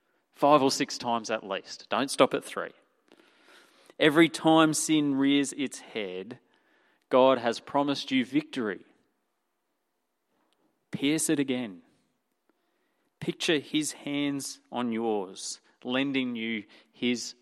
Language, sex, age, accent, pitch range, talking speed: English, male, 30-49, Australian, 120-155 Hz, 110 wpm